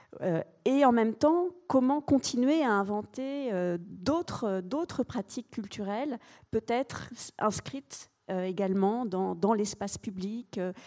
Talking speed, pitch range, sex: 105 wpm, 190-230 Hz, female